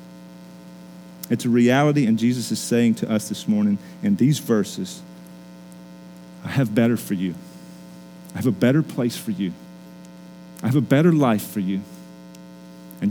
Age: 40-59